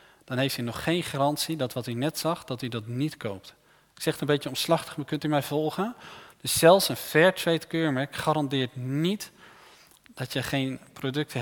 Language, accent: Dutch, Dutch